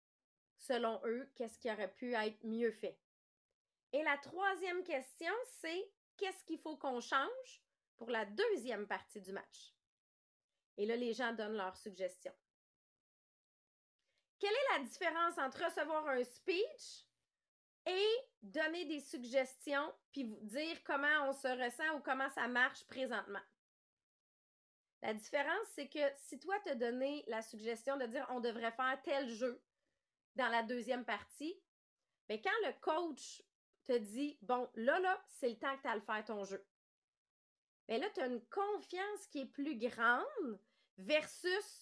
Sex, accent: female, Canadian